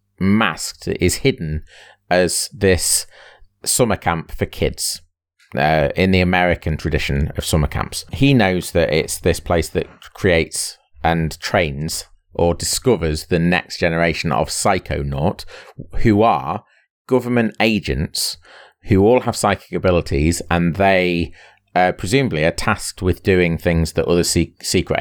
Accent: British